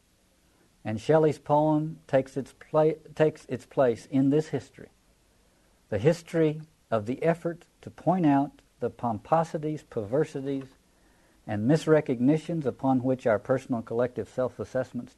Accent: American